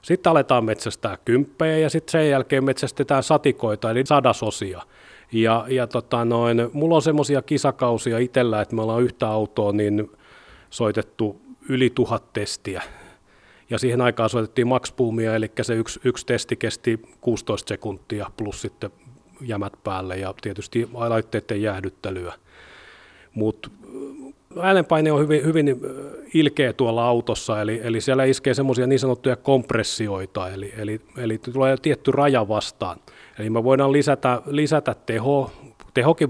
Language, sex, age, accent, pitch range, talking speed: Finnish, male, 30-49, native, 110-140 Hz, 135 wpm